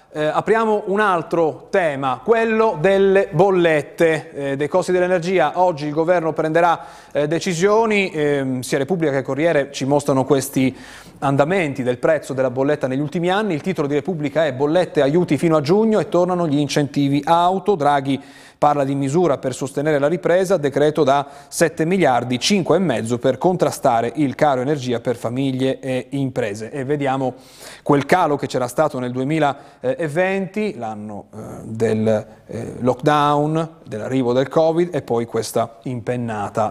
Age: 30-49